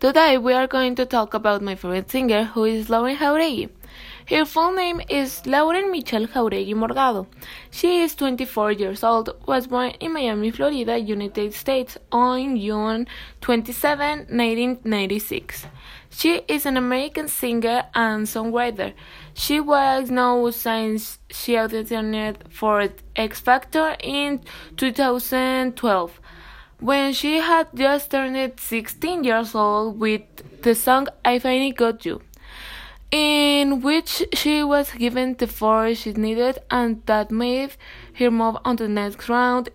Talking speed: 135 wpm